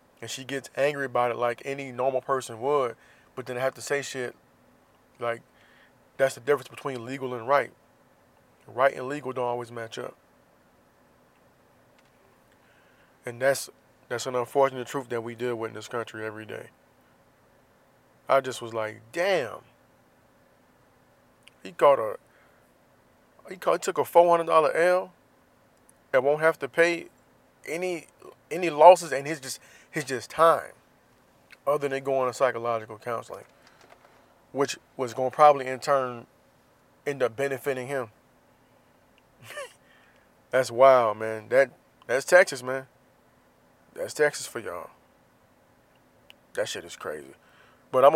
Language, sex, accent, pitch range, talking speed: English, male, American, 120-140 Hz, 140 wpm